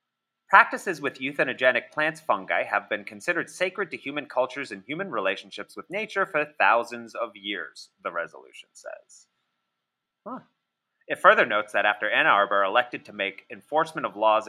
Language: English